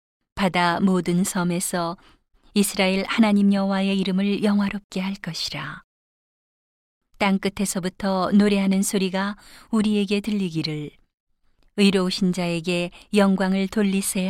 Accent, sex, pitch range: native, female, 175-200 Hz